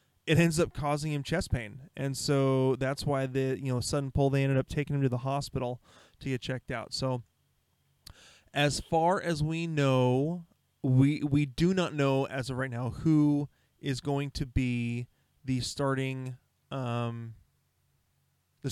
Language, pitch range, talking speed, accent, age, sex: English, 125-150 Hz, 165 wpm, American, 20-39, male